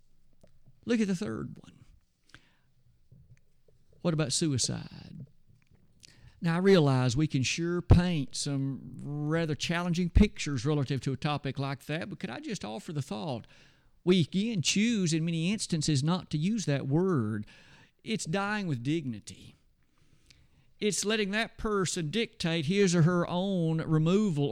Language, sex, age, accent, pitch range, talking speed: English, male, 50-69, American, 145-195 Hz, 140 wpm